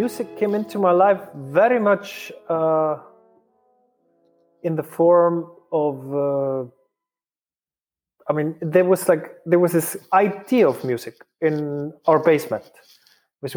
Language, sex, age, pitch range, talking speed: English, male, 30-49, 145-185 Hz, 125 wpm